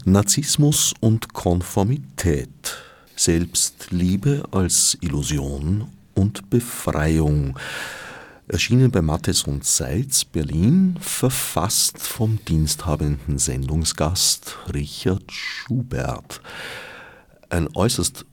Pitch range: 80-105 Hz